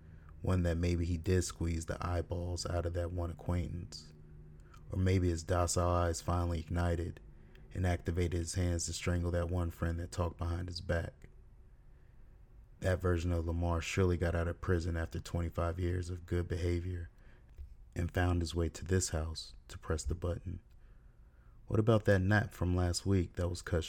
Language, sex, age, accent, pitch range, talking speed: English, male, 30-49, American, 80-90 Hz, 175 wpm